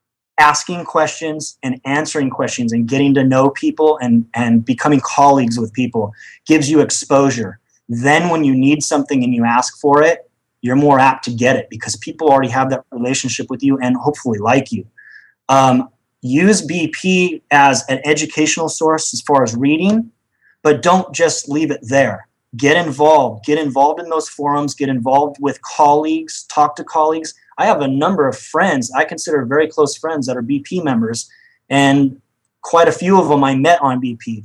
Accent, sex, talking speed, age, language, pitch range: American, male, 180 wpm, 30-49, English, 130-155 Hz